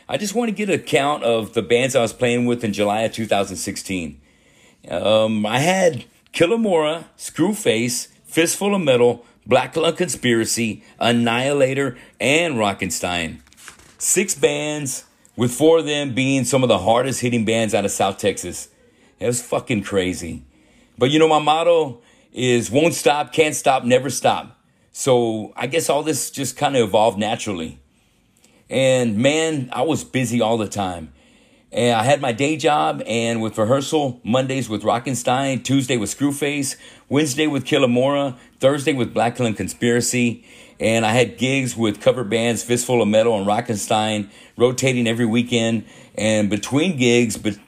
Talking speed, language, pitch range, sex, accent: 155 wpm, English, 110-135 Hz, male, American